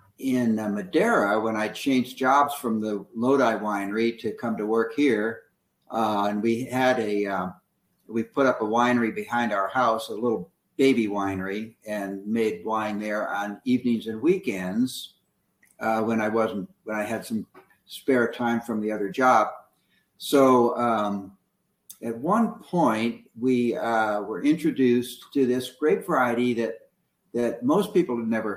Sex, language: male, English